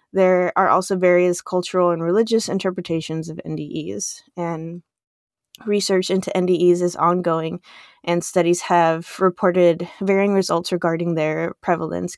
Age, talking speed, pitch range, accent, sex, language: 20-39, 125 wpm, 165-190 Hz, American, female, English